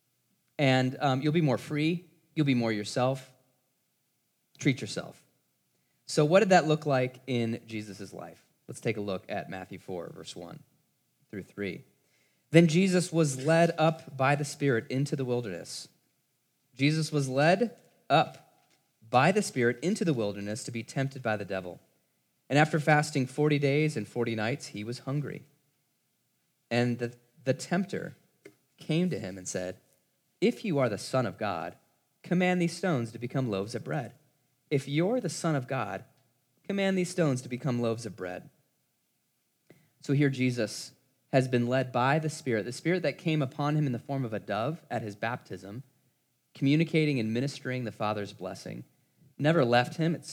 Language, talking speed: English, 170 wpm